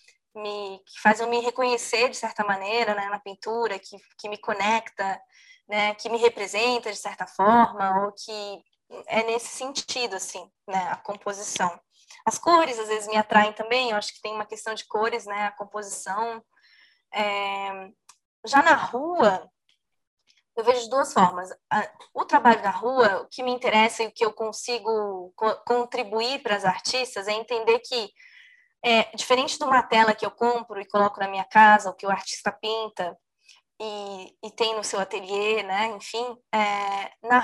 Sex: female